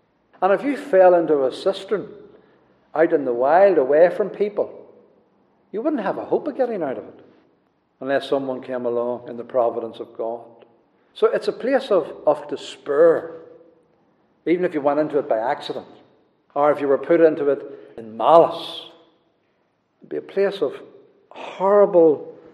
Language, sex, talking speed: English, male, 170 wpm